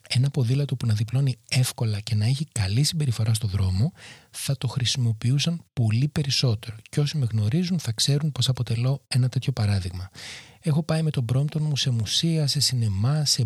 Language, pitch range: Greek, 115-150 Hz